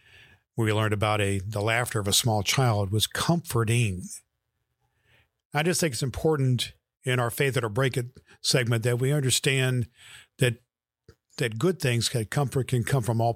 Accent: American